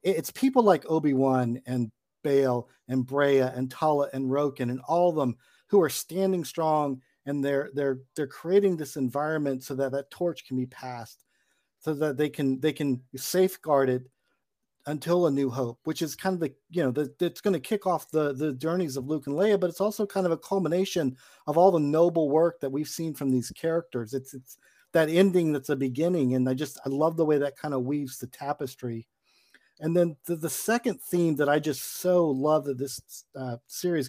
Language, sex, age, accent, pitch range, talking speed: English, male, 50-69, American, 130-170 Hz, 210 wpm